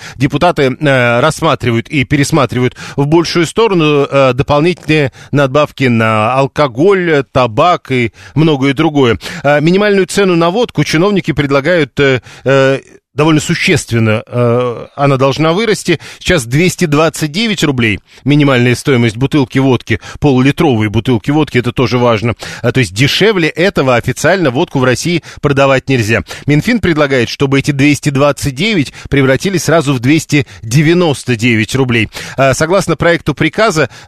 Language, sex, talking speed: Russian, male, 115 wpm